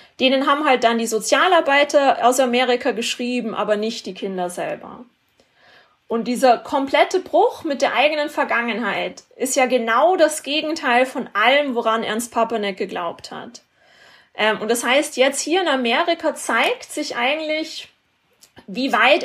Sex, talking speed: female, 145 wpm